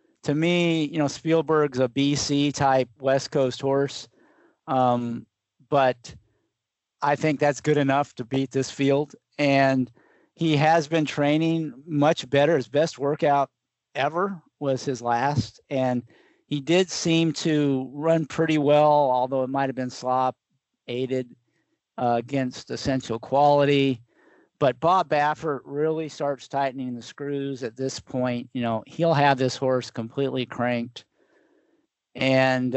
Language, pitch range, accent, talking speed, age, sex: English, 130-150 Hz, American, 135 wpm, 50-69, male